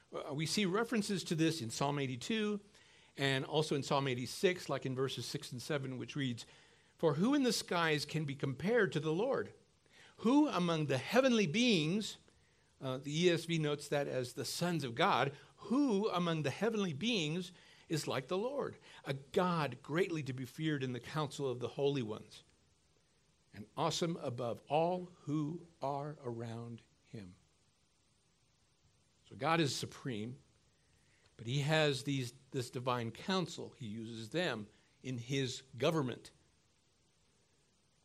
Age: 50-69